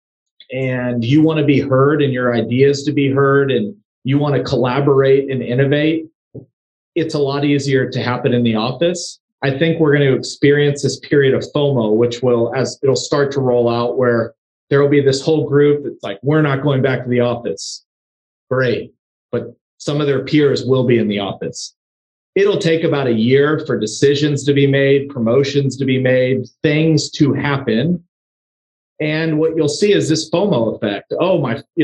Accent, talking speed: American, 190 wpm